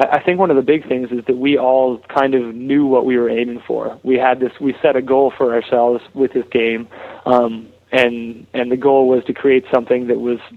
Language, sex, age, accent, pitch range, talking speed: English, male, 20-39, American, 120-130 Hz, 240 wpm